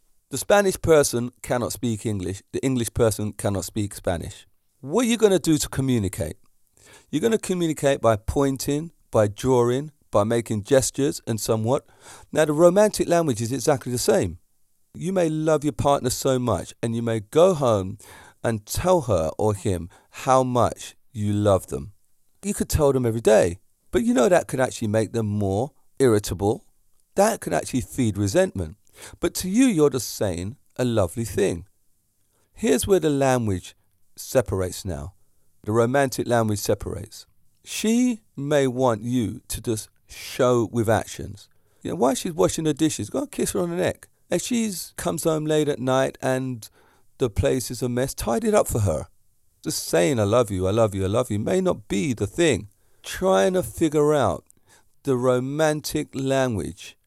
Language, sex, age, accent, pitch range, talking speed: English, male, 40-59, British, 100-145 Hz, 175 wpm